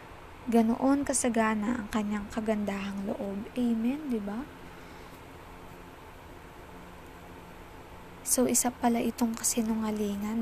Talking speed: 80 wpm